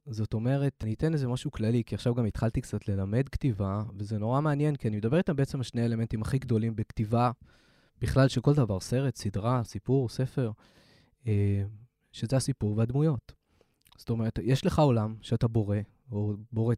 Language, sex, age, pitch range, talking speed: Hebrew, male, 20-39, 115-150 Hz, 170 wpm